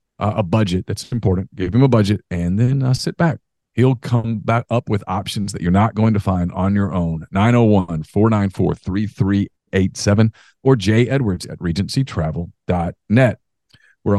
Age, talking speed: 40-59, 150 wpm